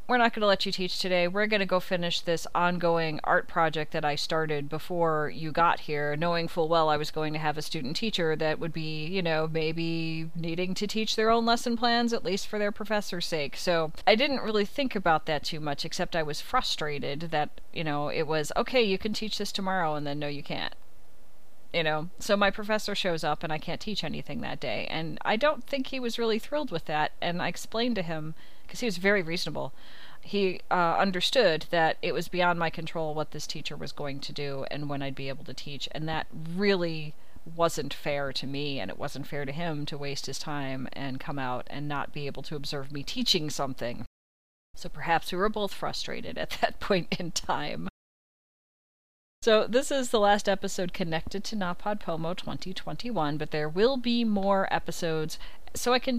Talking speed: 215 wpm